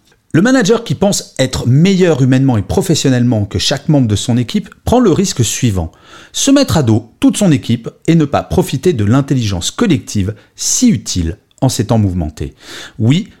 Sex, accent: male, French